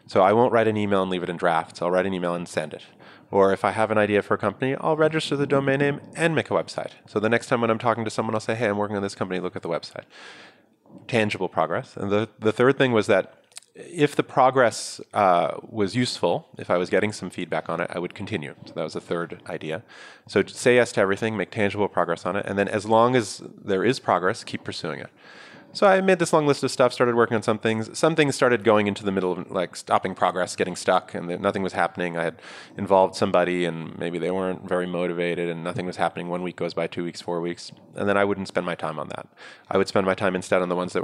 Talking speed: 265 wpm